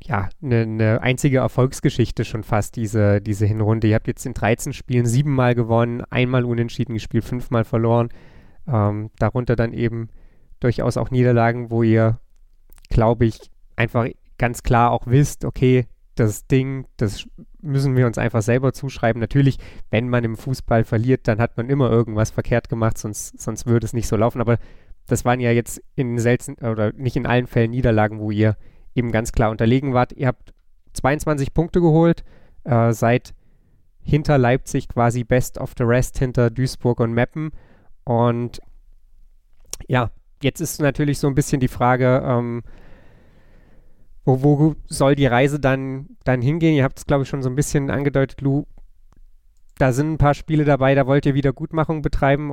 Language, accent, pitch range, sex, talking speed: German, German, 115-135 Hz, male, 170 wpm